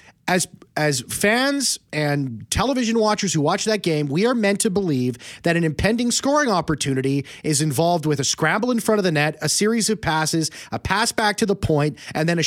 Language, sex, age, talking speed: English, male, 30-49, 205 wpm